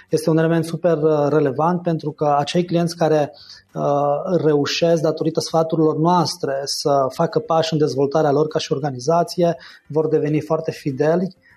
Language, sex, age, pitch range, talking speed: Romanian, male, 20-39, 145-165 Hz, 145 wpm